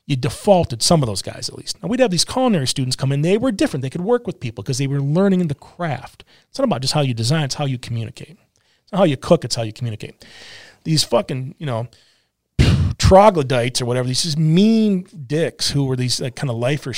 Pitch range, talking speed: 135-195 Hz, 235 wpm